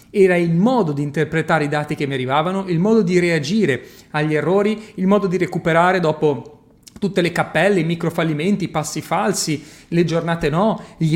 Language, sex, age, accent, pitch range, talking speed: Italian, male, 30-49, native, 155-210 Hz, 185 wpm